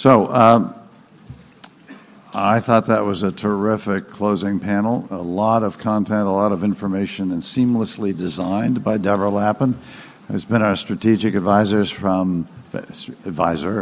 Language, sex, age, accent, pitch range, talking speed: English, male, 60-79, American, 95-115 Hz, 135 wpm